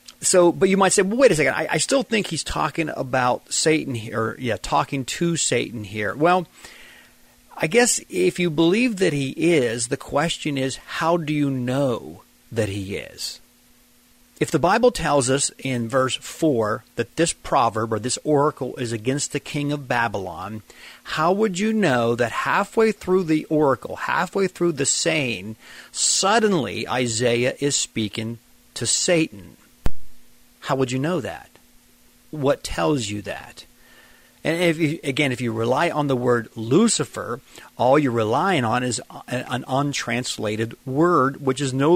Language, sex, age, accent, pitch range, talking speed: English, male, 40-59, American, 120-170 Hz, 165 wpm